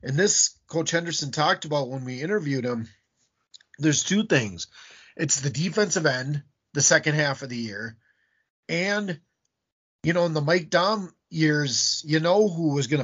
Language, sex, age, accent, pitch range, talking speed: English, male, 30-49, American, 125-170 Hz, 165 wpm